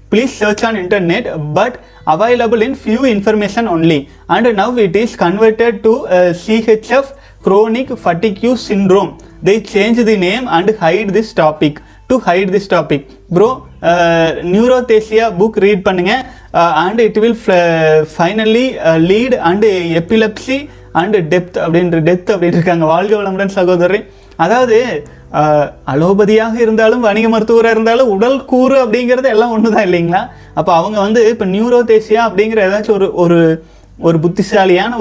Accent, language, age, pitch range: native, Tamil, 30-49, 175-220 Hz